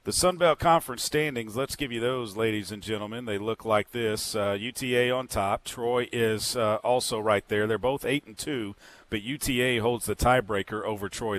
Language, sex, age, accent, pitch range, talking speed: English, male, 40-59, American, 105-130 Hz, 195 wpm